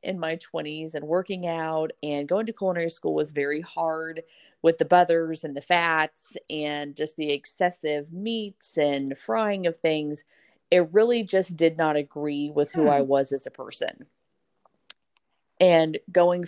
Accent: American